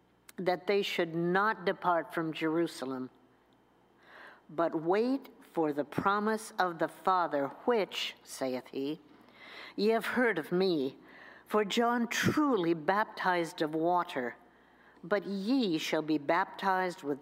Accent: American